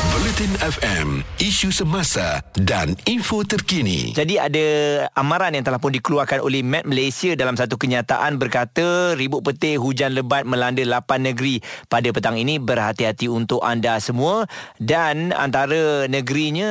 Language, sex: Malay, male